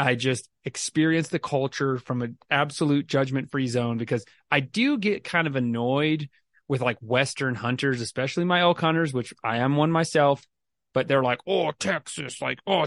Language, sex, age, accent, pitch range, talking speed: English, male, 30-49, American, 130-165 Hz, 175 wpm